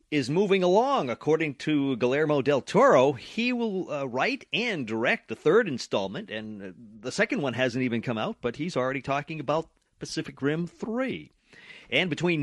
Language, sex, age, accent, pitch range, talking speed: English, male, 40-59, American, 130-200 Hz, 175 wpm